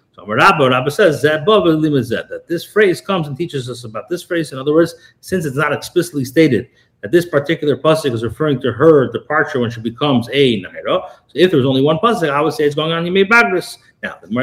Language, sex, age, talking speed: English, male, 40-59, 210 wpm